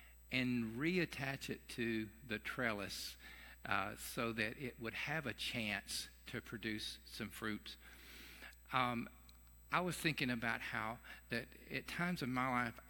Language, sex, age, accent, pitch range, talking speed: English, male, 50-69, American, 105-135 Hz, 140 wpm